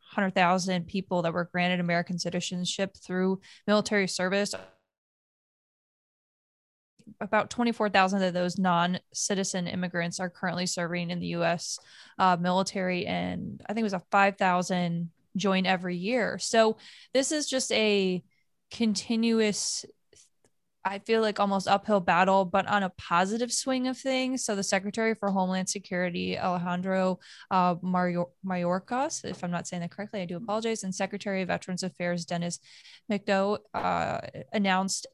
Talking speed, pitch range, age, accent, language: 135 wpm, 180-205 Hz, 20-39, American, English